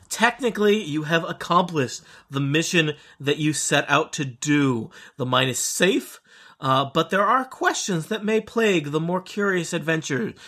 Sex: male